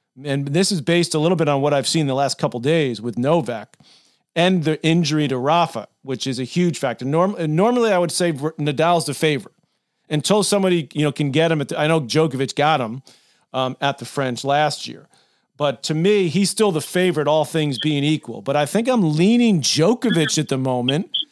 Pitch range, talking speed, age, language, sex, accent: 145-175 Hz, 215 wpm, 40-59, English, male, American